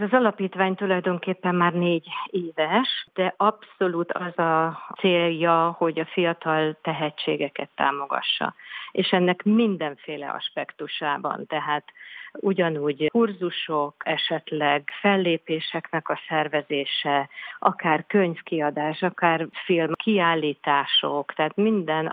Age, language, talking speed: 50-69, Hungarian, 90 wpm